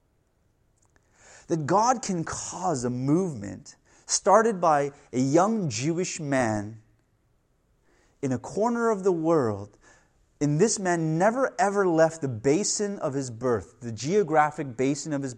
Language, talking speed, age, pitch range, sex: English, 135 wpm, 30-49, 125-195 Hz, male